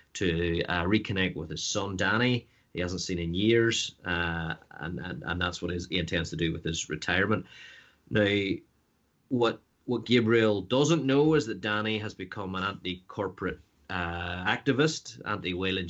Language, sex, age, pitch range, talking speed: English, male, 30-49, 90-105 Hz, 155 wpm